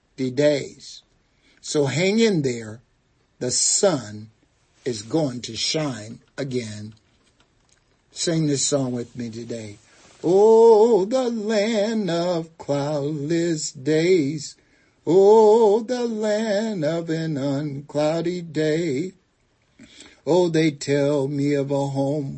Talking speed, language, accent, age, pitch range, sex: 100 wpm, English, American, 60-79, 135-180 Hz, male